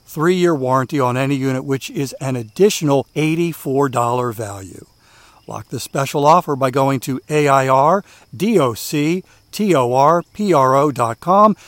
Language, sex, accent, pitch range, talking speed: English, male, American, 115-150 Hz, 105 wpm